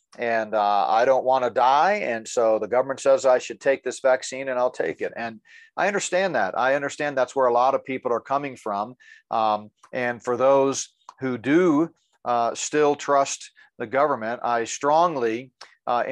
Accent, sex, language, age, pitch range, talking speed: American, male, English, 40-59, 115-135 Hz, 185 wpm